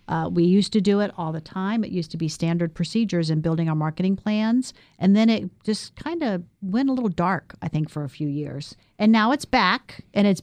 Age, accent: 50-69, American